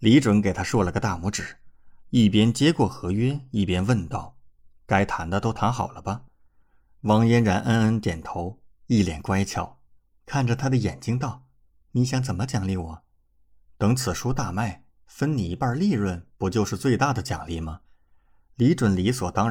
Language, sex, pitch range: Chinese, male, 85-120 Hz